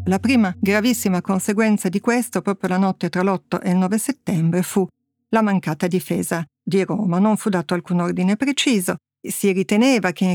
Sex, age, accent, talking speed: female, 50-69, native, 180 wpm